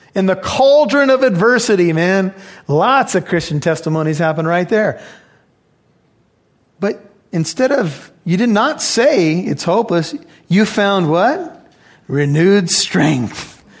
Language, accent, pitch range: English, American, 145-195 Hz